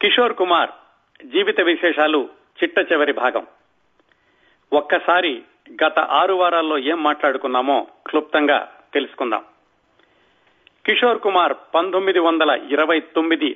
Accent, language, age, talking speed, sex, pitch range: native, Telugu, 40-59, 80 wpm, male, 145-170 Hz